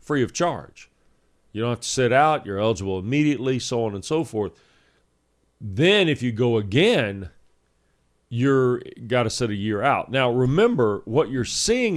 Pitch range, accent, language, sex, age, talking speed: 100-135 Hz, American, English, male, 40-59, 170 wpm